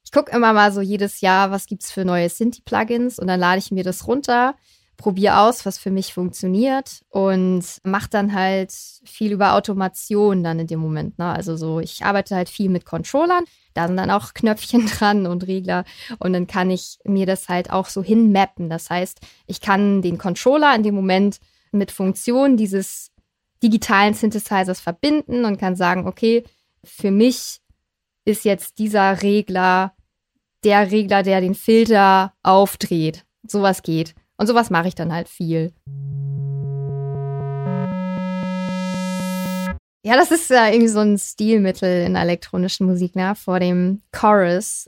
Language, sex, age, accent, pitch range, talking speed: German, female, 20-39, German, 180-210 Hz, 160 wpm